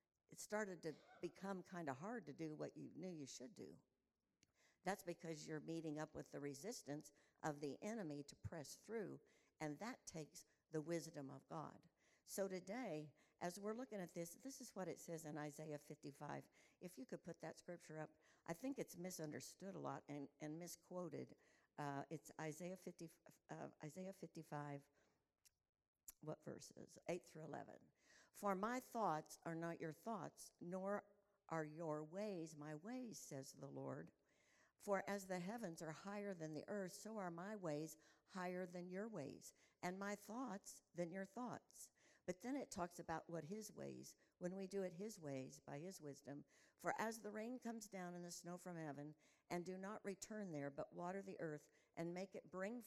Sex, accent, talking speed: female, American, 180 wpm